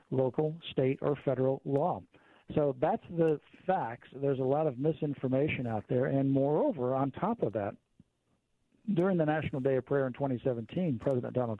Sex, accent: male, American